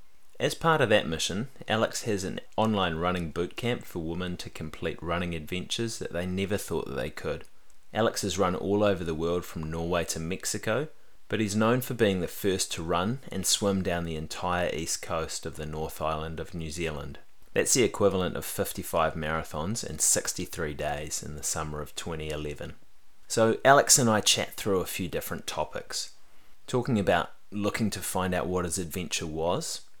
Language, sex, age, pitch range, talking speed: English, male, 30-49, 80-100 Hz, 185 wpm